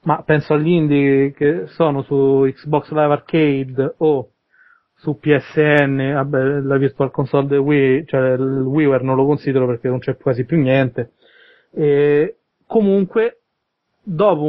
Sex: male